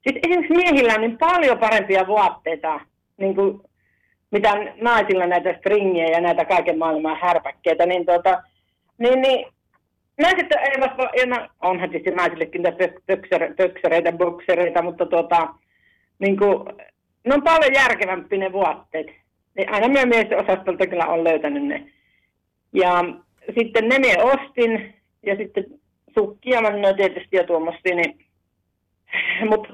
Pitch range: 170-225 Hz